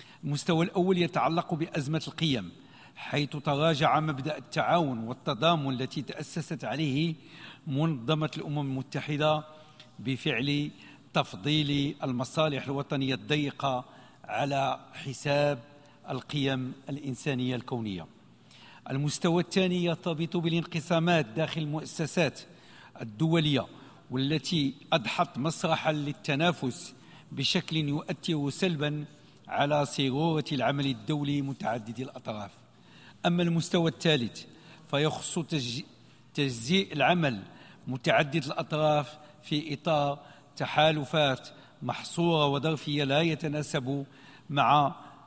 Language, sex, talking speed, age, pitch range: Arabic, male, 80 wpm, 50-69, 135-160 Hz